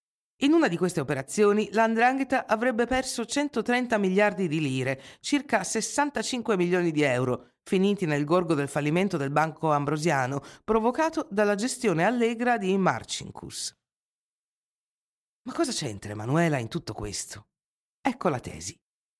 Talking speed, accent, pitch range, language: 130 wpm, native, 140-215 Hz, Italian